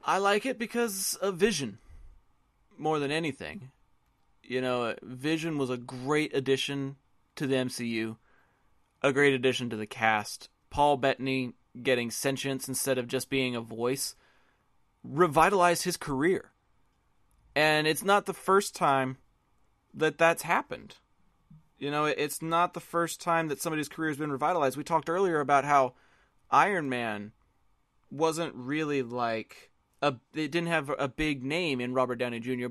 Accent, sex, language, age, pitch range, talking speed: American, male, English, 30-49, 130-160 Hz, 145 wpm